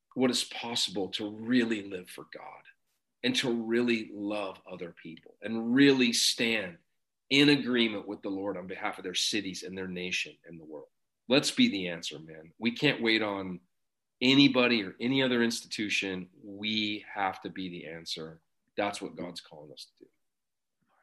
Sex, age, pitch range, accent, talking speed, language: male, 40-59, 90-115 Hz, American, 175 wpm, English